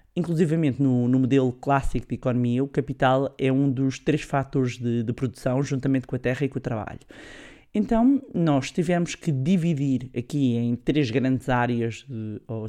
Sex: male